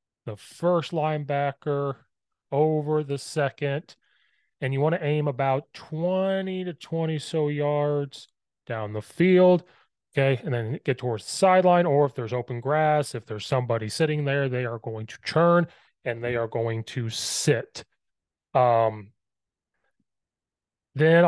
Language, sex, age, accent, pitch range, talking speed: English, male, 30-49, American, 115-145 Hz, 140 wpm